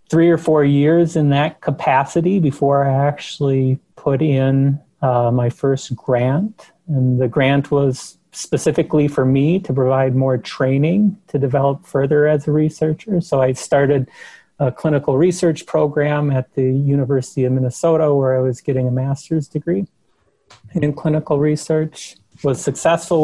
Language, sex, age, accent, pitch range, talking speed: English, male, 30-49, American, 130-150 Hz, 145 wpm